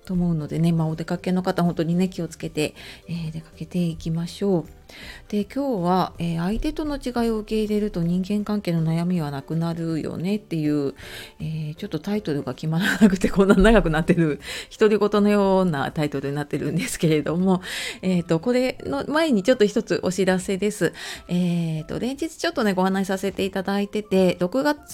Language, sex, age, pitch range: Japanese, female, 30-49, 165-215 Hz